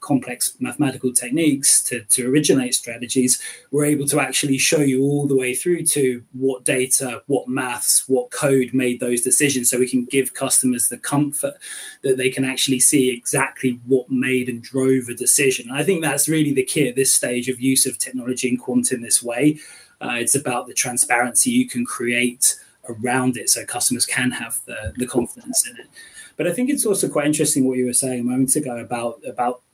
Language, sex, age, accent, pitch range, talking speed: English, male, 20-39, British, 125-145 Hz, 200 wpm